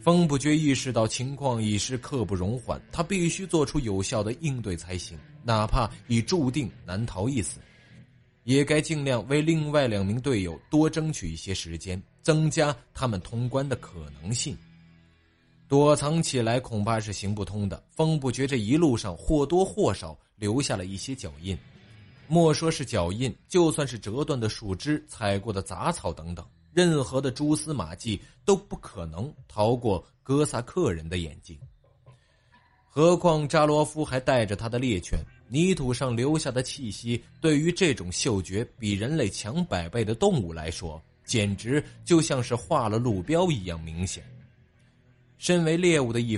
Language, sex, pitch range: Chinese, male, 100-150 Hz